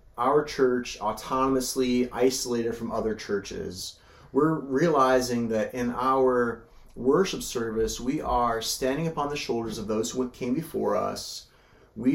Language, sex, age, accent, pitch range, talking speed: English, male, 30-49, American, 115-135 Hz, 135 wpm